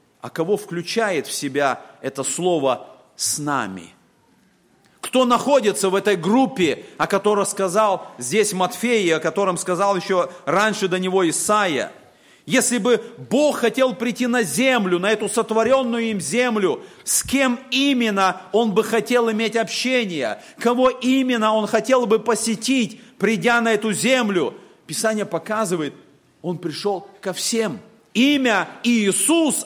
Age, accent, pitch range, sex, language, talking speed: 40-59, native, 180-240 Hz, male, Russian, 130 wpm